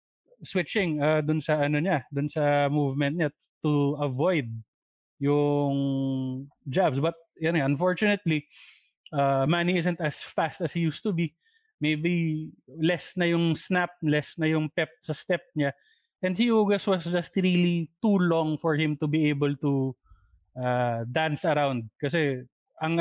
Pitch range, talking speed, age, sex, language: 140-175 Hz, 160 wpm, 20-39, male, English